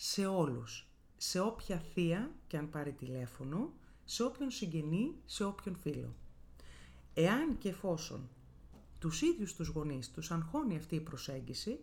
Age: 30-49